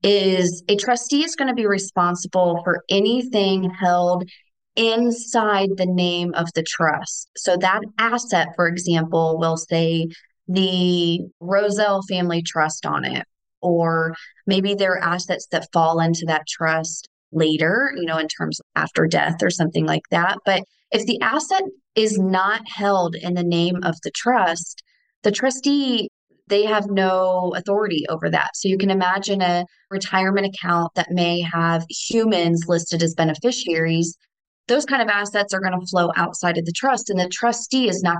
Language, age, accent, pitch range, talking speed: English, 20-39, American, 170-210 Hz, 160 wpm